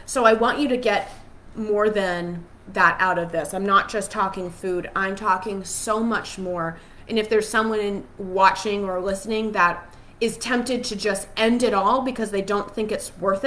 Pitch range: 190-240 Hz